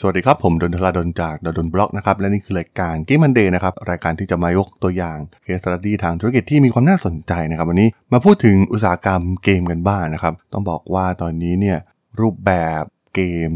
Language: Thai